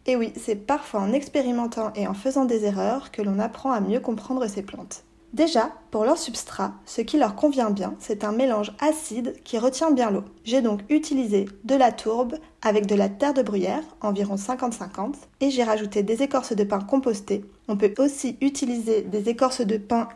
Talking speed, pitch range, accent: 195 wpm, 210-265 Hz, French